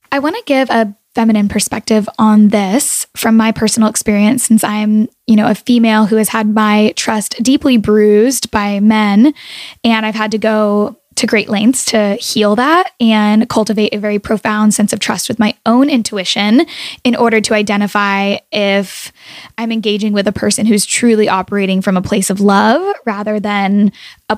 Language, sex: English, female